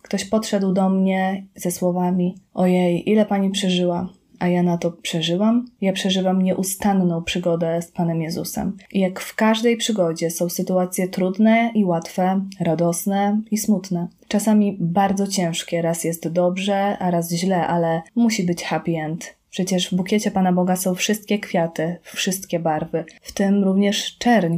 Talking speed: 155 wpm